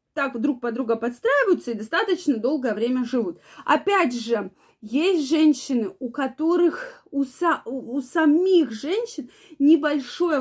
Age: 20-39